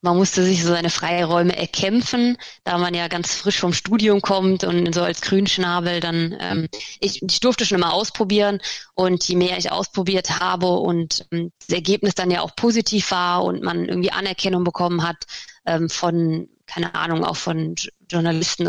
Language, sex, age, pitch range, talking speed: German, female, 20-39, 170-190 Hz, 175 wpm